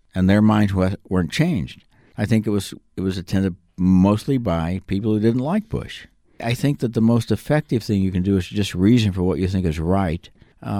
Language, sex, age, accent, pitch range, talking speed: English, male, 60-79, American, 90-110 Hz, 215 wpm